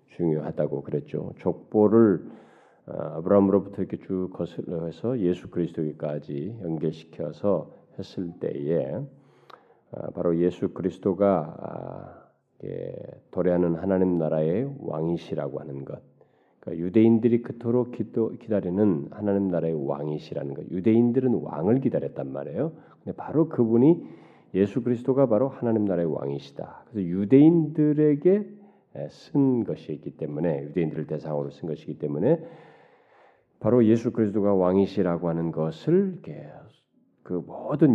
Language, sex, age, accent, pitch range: Korean, male, 40-59, native, 80-120 Hz